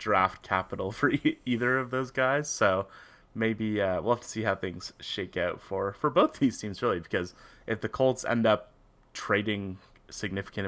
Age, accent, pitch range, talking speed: 30-49, American, 100-135 Hz, 180 wpm